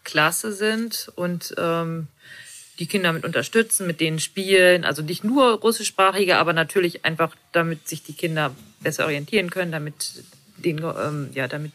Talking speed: 155 wpm